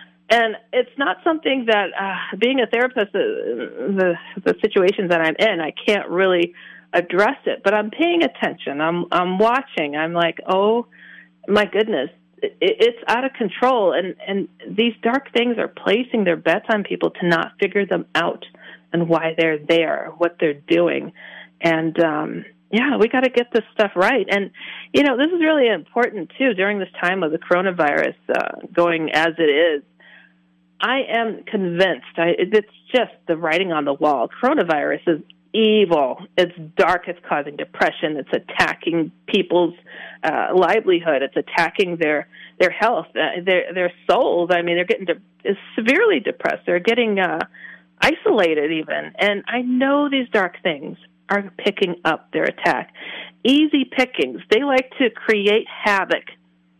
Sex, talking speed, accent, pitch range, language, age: female, 160 wpm, American, 170-235 Hz, English, 40-59